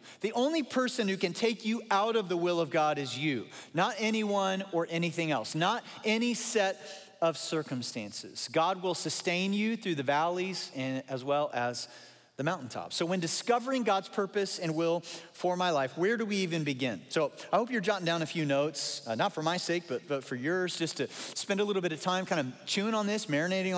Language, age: English, 40-59